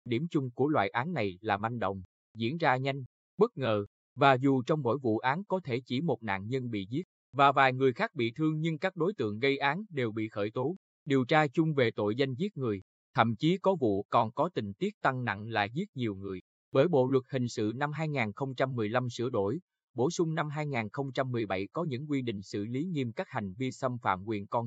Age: 20-39